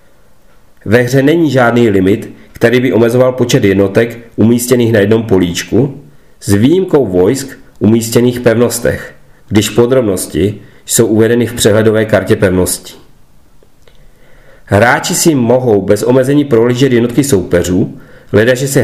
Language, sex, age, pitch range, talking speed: Czech, male, 40-59, 100-125 Hz, 120 wpm